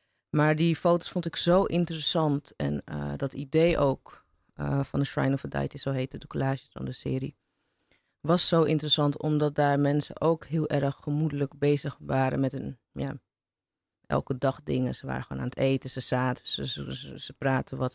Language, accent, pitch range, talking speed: Dutch, Dutch, 135-155 Hz, 190 wpm